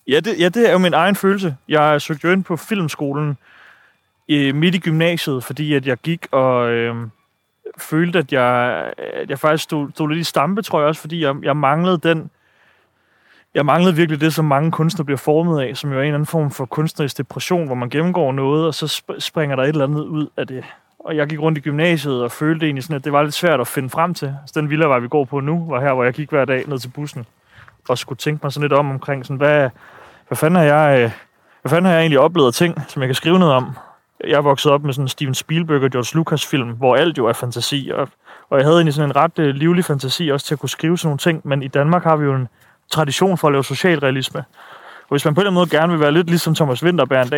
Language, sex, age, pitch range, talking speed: Danish, male, 30-49, 135-165 Hz, 255 wpm